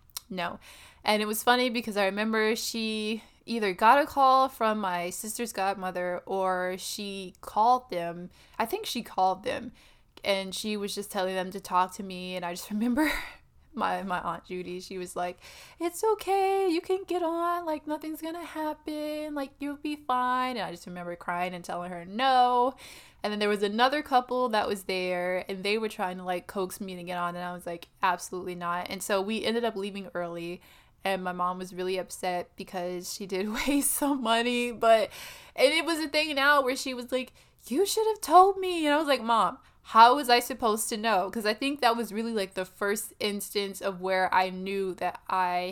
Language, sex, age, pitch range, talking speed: English, female, 20-39, 185-255 Hz, 210 wpm